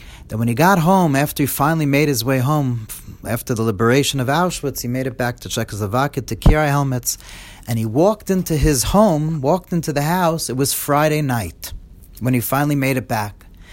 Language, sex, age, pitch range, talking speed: English, male, 40-59, 120-180 Hz, 200 wpm